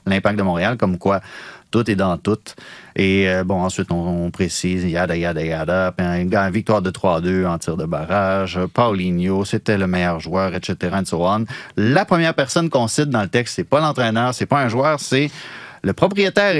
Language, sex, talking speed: French, male, 190 wpm